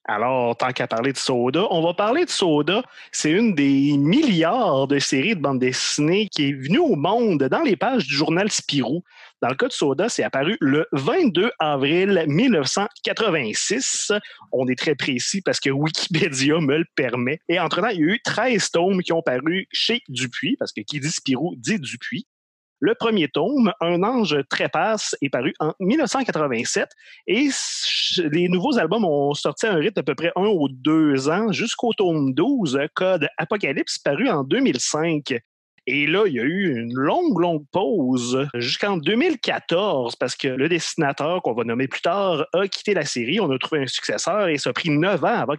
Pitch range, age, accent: 140-195 Hz, 30-49, Canadian